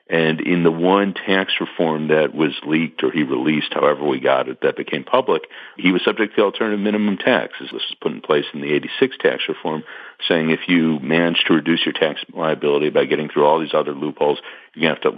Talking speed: 220 wpm